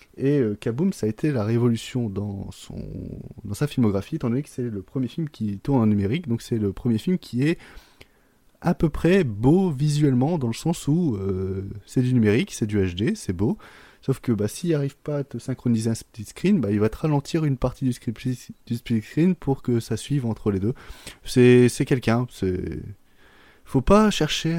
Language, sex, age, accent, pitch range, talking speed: French, male, 20-39, French, 105-145 Hz, 210 wpm